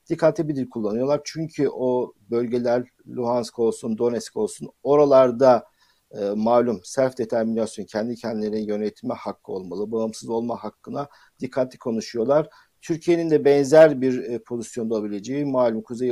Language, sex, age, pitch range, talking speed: Turkish, male, 50-69, 115-145 Hz, 125 wpm